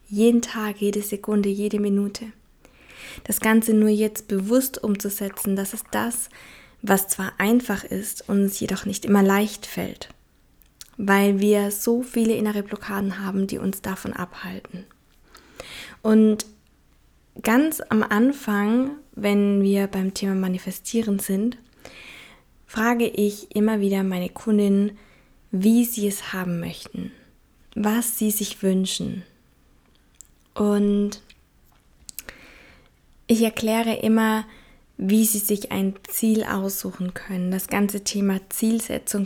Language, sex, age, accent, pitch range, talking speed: German, female, 20-39, German, 195-220 Hz, 115 wpm